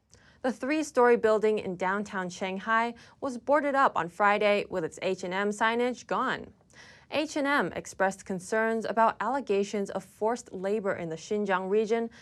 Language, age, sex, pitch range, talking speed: English, 20-39, female, 195-245 Hz, 140 wpm